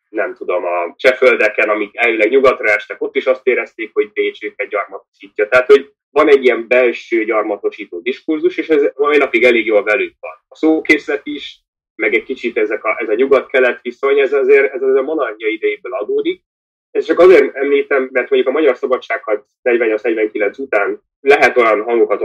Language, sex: Hungarian, male